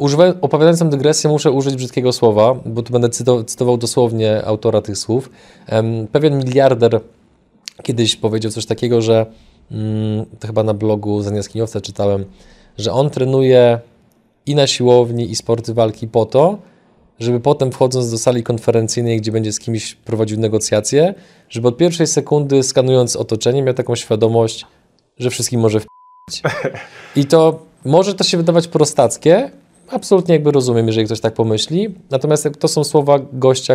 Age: 20-39